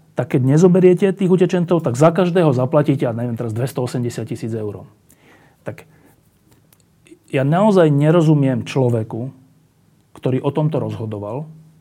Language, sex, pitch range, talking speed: Slovak, male, 125-160 Hz, 125 wpm